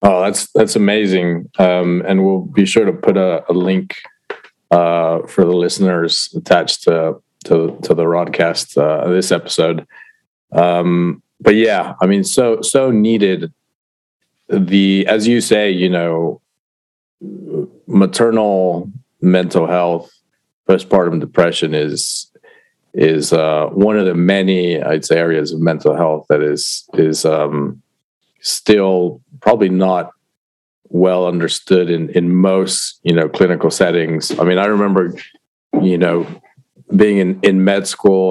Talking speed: 135 wpm